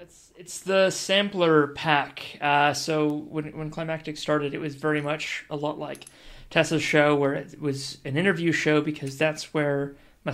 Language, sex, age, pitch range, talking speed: English, male, 30-49, 145-160 Hz, 175 wpm